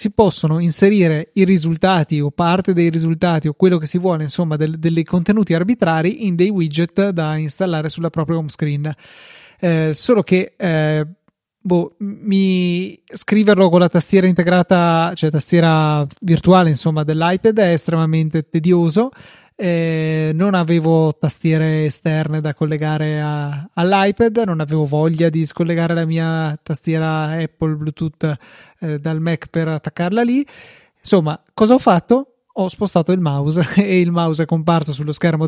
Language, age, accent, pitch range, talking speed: Italian, 30-49, native, 155-180 Hz, 145 wpm